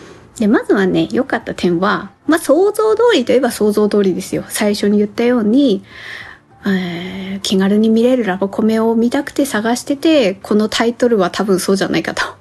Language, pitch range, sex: Japanese, 195-280 Hz, female